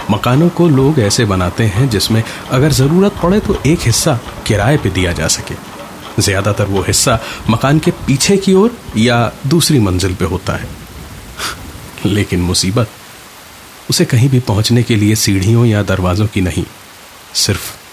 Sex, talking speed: male, 155 wpm